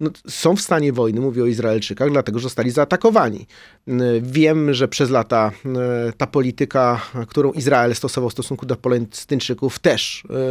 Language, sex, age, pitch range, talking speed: Polish, male, 30-49, 125-155 Hz, 150 wpm